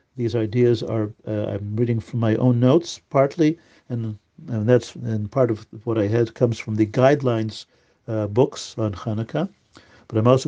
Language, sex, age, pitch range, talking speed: English, male, 50-69, 110-130 Hz, 170 wpm